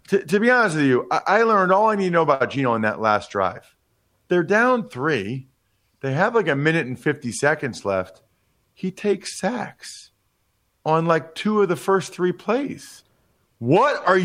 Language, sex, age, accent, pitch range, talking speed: English, male, 40-59, American, 115-175 Hz, 190 wpm